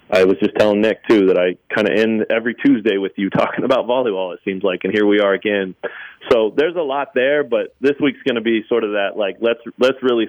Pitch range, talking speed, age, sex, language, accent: 95-125 Hz, 245 wpm, 30-49, male, English, American